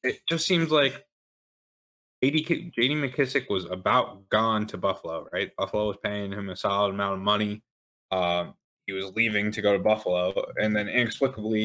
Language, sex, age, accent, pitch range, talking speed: English, male, 20-39, American, 100-125 Hz, 165 wpm